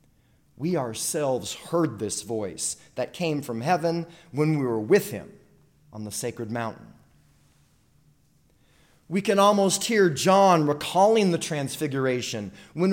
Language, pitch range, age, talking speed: English, 135-185 Hz, 30-49, 125 wpm